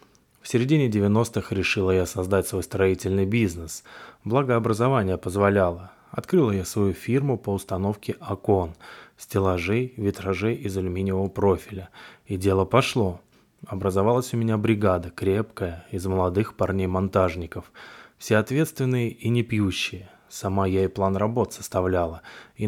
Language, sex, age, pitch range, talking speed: Russian, male, 20-39, 95-115 Hz, 125 wpm